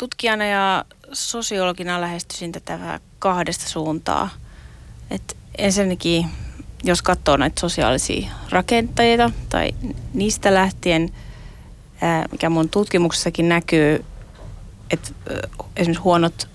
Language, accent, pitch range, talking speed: Finnish, native, 155-185 Hz, 85 wpm